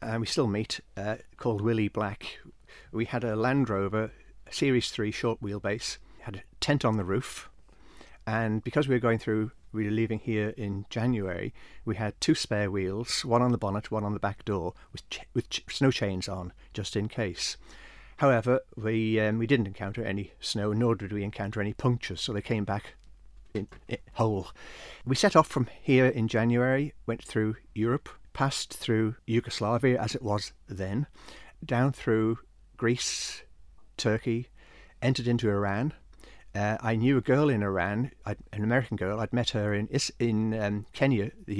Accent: British